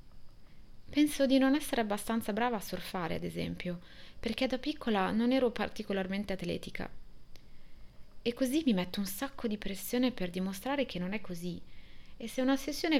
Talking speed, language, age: 160 wpm, Italian, 30-49